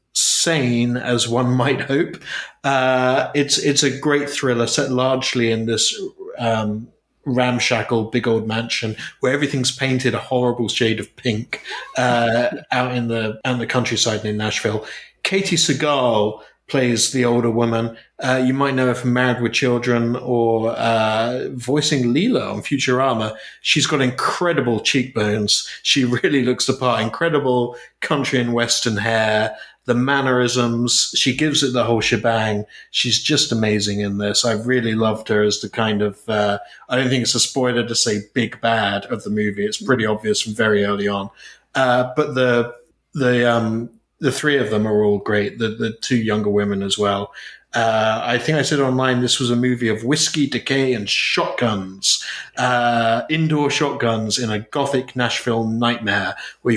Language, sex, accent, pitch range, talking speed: English, male, British, 110-130 Hz, 165 wpm